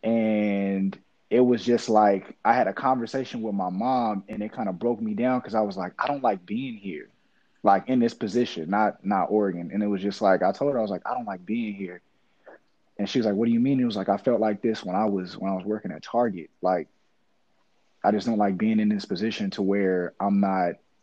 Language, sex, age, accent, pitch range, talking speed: English, male, 20-39, American, 95-115 Hz, 250 wpm